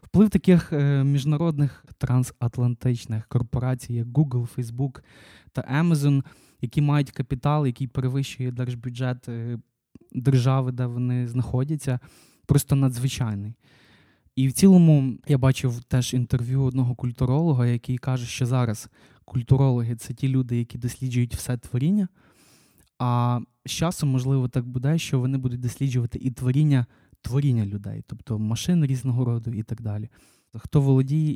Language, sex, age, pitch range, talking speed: Ukrainian, male, 20-39, 120-140 Hz, 130 wpm